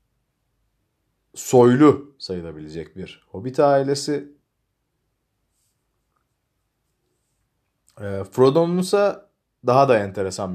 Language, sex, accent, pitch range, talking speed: Turkish, male, native, 95-140 Hz, 65 wpm